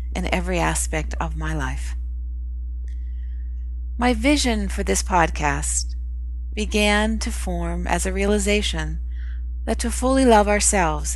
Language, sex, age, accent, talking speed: English, female, 40-59, American, 120 wpm